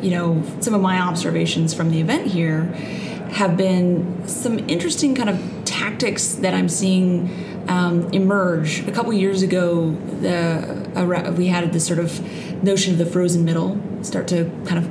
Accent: American